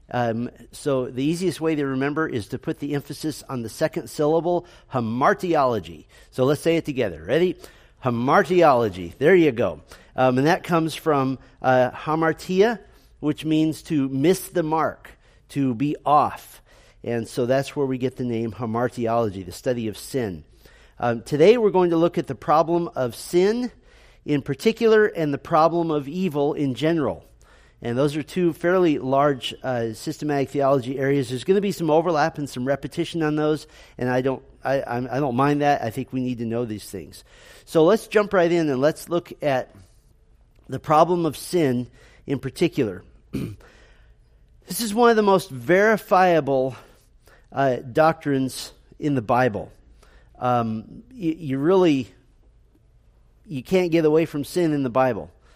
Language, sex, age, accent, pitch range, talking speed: English, male, 40-59, American, 125-165 Hz, 165 wpm